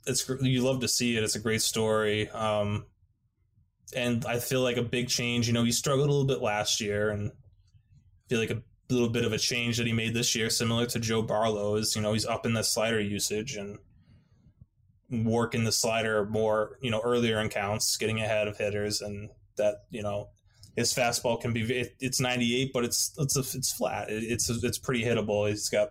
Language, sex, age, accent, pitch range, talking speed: English, male, 20-39, American, 105-120 Hz, 215 wpm